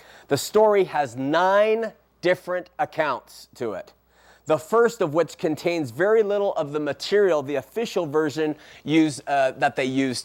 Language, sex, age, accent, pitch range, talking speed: English, male, 30-49, American, 145-195 Hz, 145 wpm